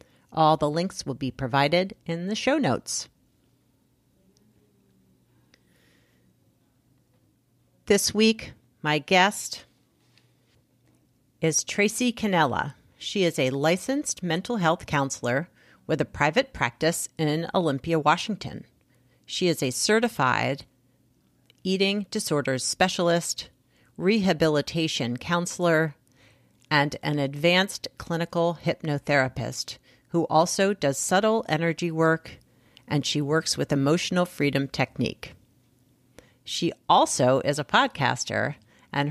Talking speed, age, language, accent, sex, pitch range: 100 wpm, 40-59, English, American, female, 135-180 Hz